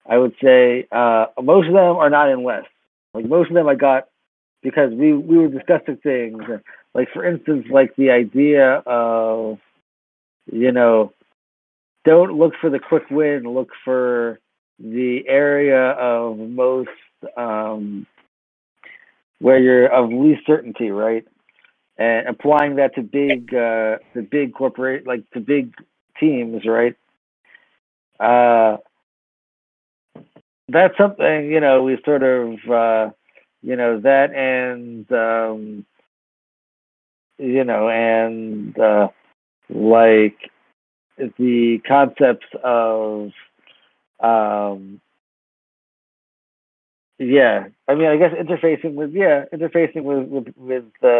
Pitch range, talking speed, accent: 110-140 Hz, 115 wpm, American